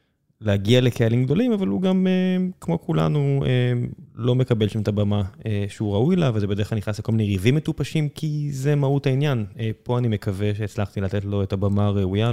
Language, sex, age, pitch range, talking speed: Hebrew, male, 20-39, 100-130 Hz, 180 wpm